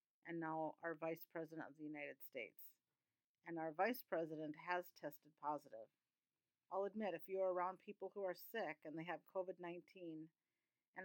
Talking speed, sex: 170 wpm, female